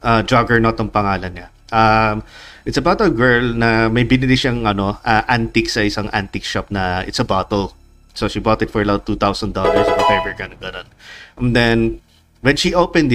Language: Filipino